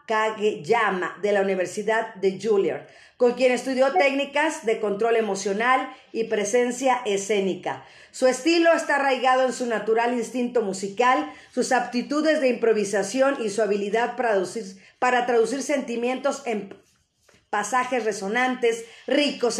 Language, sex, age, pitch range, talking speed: Spanish, female, 40-59, 215-265 Hz, 120 wpm